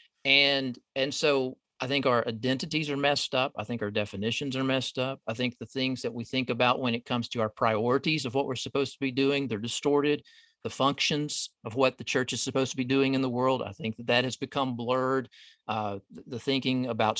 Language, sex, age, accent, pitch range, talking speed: English, male, 40-59, American, 120-145 Hz, 230 wpm